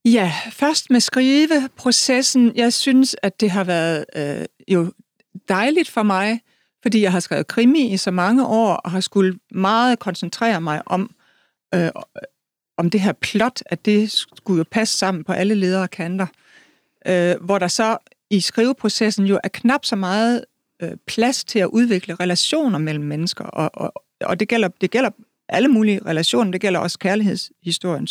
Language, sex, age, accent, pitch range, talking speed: Danish, female, 60-79, native, 180-230 Hz, 155 wpm